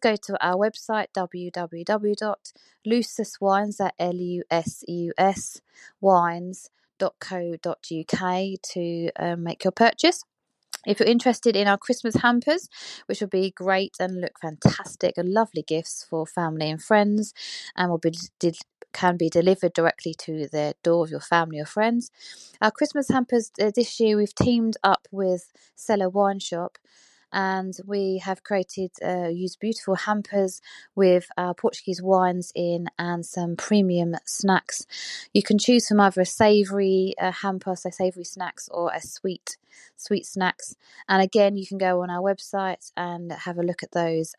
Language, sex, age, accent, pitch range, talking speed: English, female, 20-39, British, 175-210 Hz, 145 wpm